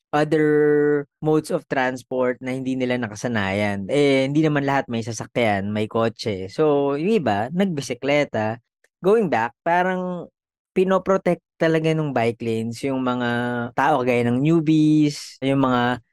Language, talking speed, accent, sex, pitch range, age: English, 135 wpm, Filipino, female, 120-150 Hz, 20-39